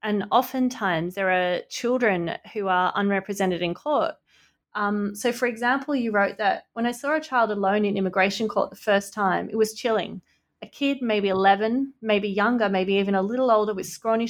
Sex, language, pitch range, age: female, English, 195-240 Hz, 30-49